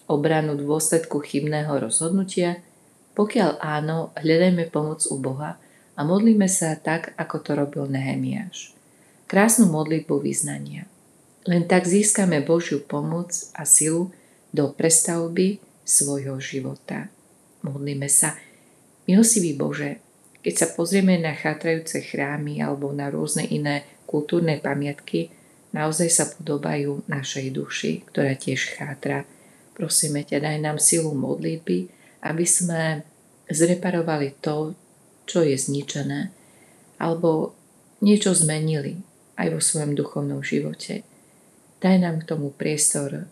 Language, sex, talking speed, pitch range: Slovak, female, 115 wpm, 145-170 Hz